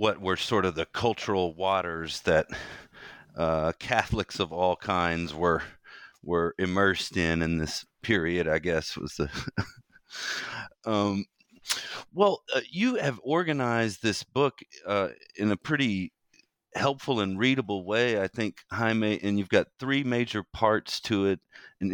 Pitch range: 90-120 Hz